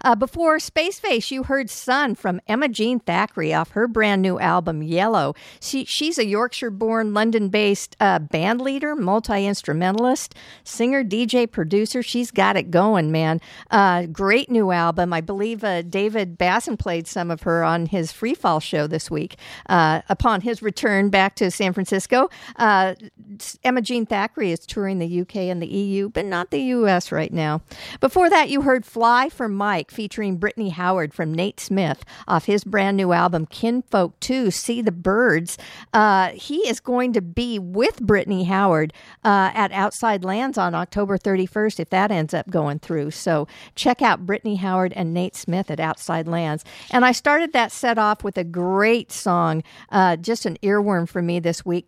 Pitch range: 175-230 Hz